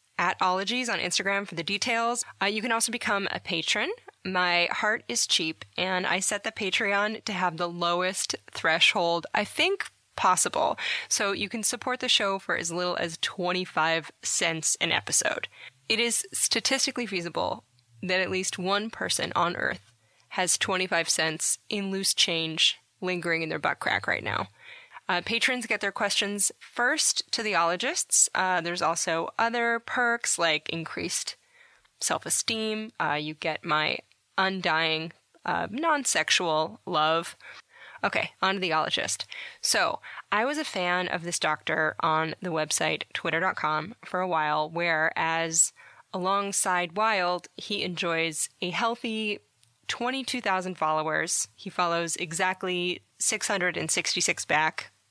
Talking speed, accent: 140 wpm, American